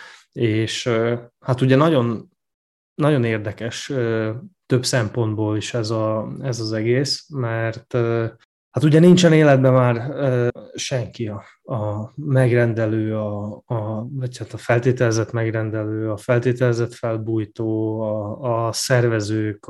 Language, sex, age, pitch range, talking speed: Hungarian, male, 20-39, 110-125 Hz, 115 wpm